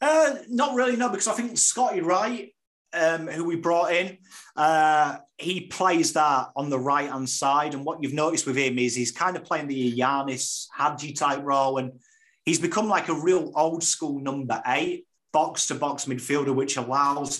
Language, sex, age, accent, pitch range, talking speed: English, male, 30-49, British, 125-155 Hz, 170 wpm